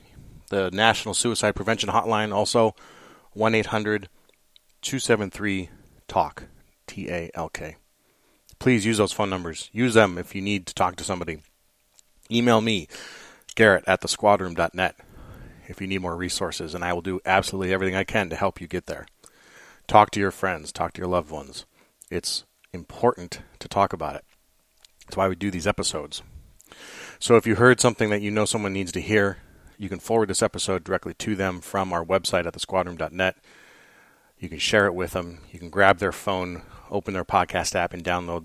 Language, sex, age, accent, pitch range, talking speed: English, male, 30-49, American, 90-105 Hz, 170 wpm